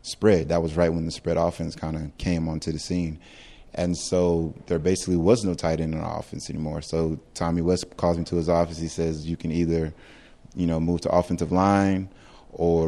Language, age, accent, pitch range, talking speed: English, 20-39, American, 80-85 Hz, 205 wpm